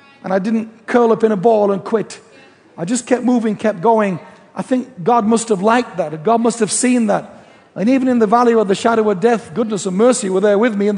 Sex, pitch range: male, 215-250 Hz